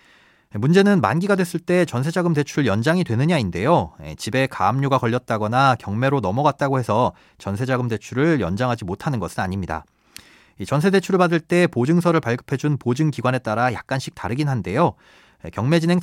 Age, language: 30-49, Korean